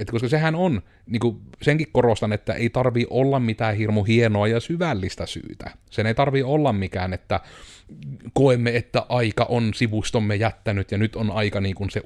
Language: Finnish